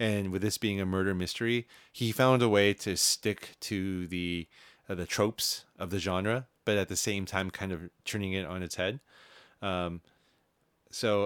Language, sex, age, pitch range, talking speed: English, male, 30-49, 90-110 Hz, 185 wpm